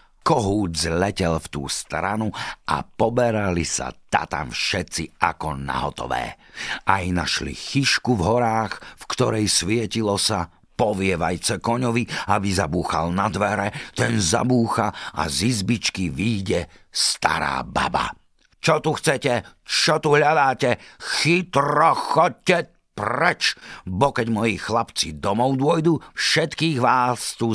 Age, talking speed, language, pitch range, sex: 50-69, 115 wpm, Slovak, 95-140 Hz, male